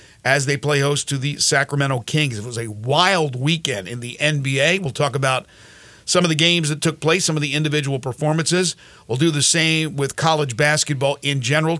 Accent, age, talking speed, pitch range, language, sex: American, 50-69, 205 wpm, 140-170 Hz, English, male